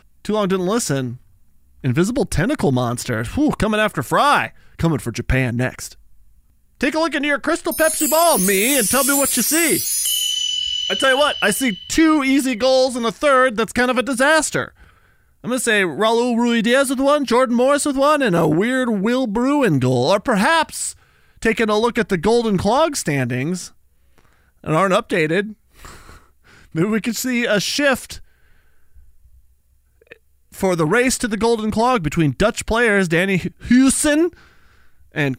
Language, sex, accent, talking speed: English, male, American, 165 wpm